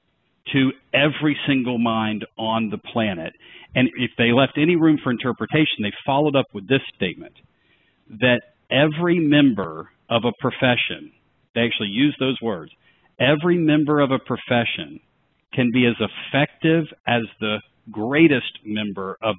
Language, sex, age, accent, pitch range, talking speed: English, male, 50-69, American, 115-140 Hz, 140 wpm